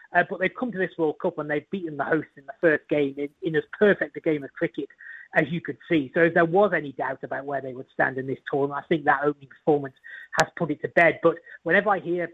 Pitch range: 145-165 Hz